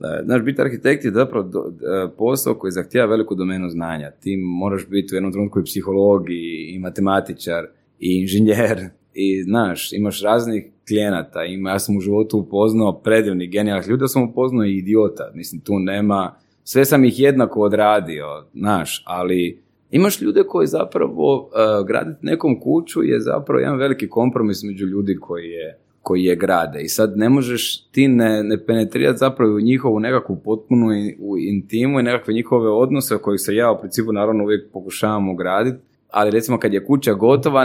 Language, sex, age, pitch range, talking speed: Croatian, male, 20-39, 95-125 Hz, 170 wpm